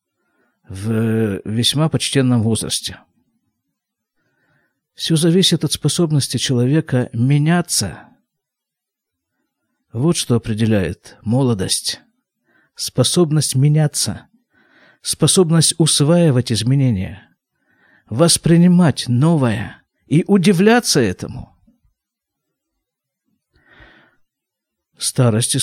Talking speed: 60 wpm